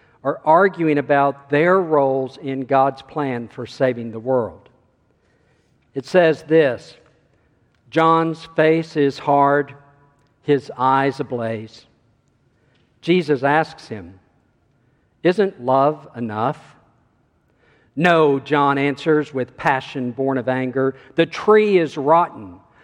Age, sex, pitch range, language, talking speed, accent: 50-69, male, 125-155 Hz, English, 105 wpm, American